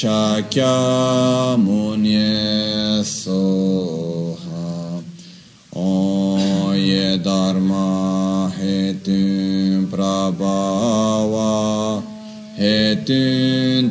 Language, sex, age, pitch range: Italian, male, 20-39, 95-110 Hz